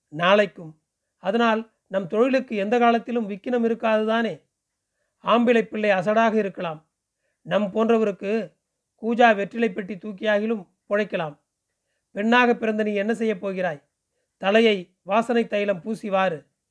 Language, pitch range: Tamil, 190-230 Hz